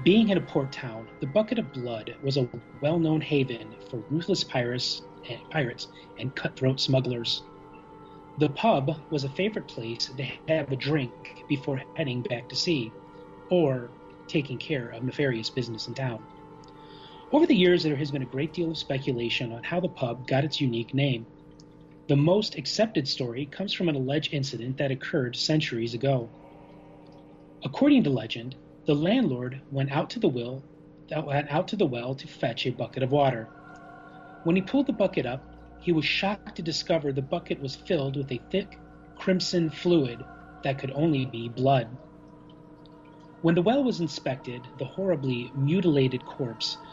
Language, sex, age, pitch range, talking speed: English, male, 30-49, 130-160 Hz, 160 wpm